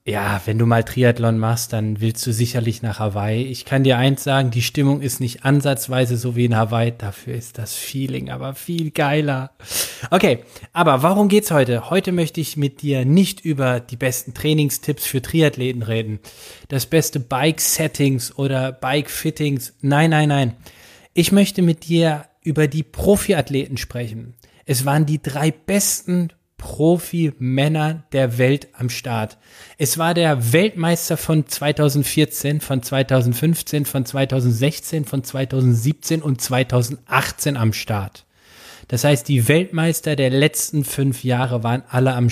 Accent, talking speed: German, 150 wpm